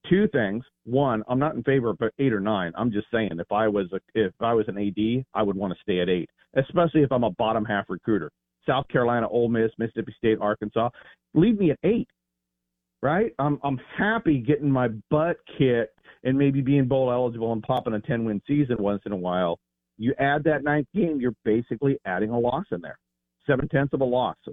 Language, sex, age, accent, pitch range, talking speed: English, male, 40-59, American, 105-145 Hz, 215 wpm